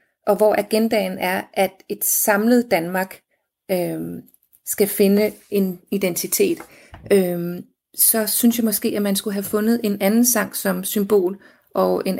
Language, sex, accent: Danish, female, native